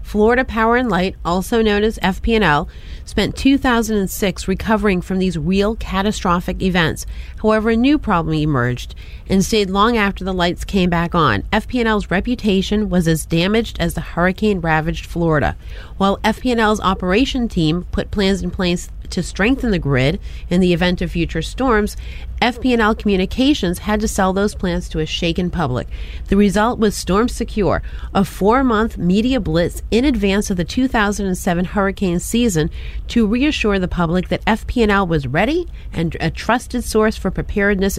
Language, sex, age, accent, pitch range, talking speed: English, female, 30-49, American, 175-220 Hz, 155 wpm